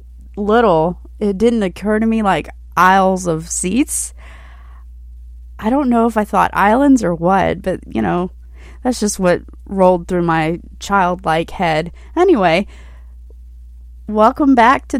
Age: 20-39